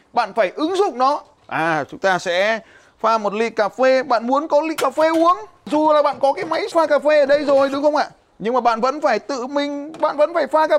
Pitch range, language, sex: 210-300 Hz, Vietnamese, male